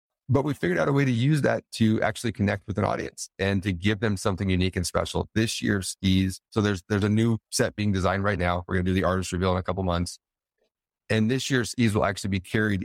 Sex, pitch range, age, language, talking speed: male, 90-115 Hz, 40-59, English, 250 wpm